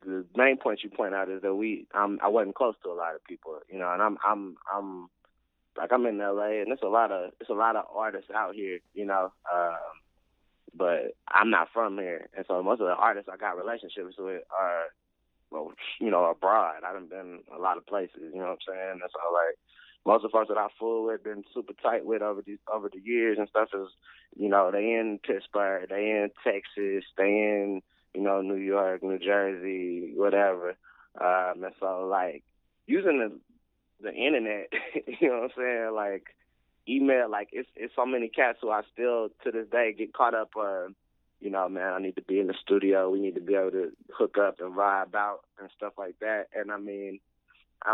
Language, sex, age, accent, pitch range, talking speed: English, male, 20-39, American, 95-110 Hz, 220 wpm